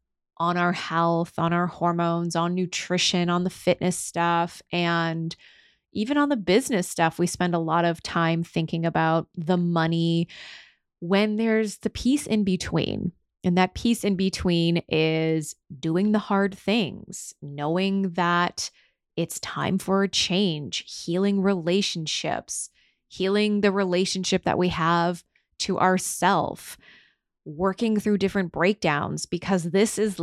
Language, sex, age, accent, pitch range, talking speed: English, female, 20-39, American, 165-195 Hz, 135 wpm